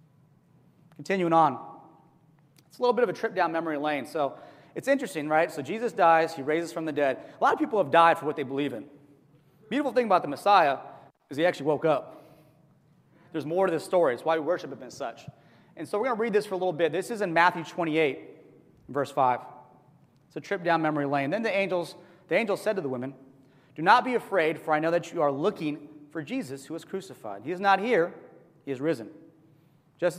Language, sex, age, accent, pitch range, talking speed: English, male, 30-49, American, 150-190 Hz, 230 wpm